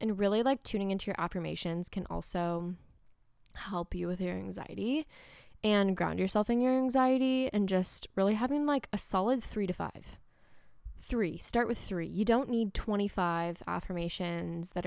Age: 10-29